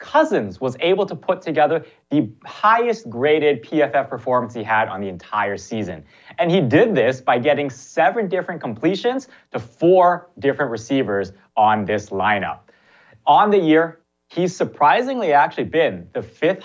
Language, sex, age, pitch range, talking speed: English, male, 30-49, 115-165 Hz, 150 wpm